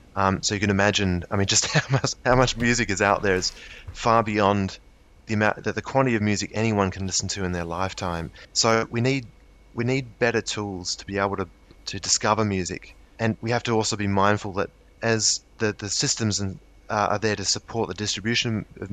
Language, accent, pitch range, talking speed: English, Australian, 95-110 Hz, 215 wpm